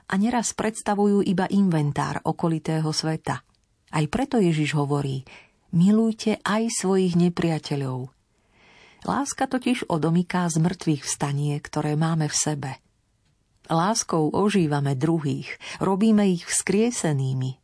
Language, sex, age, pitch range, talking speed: Slovak, female, 40-59, 145-200 Hz, 105 wpm